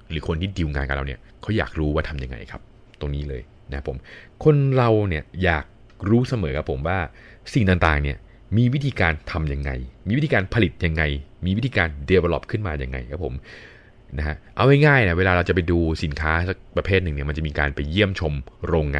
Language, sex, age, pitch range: Thai, male, 20-39, 80-110 Hz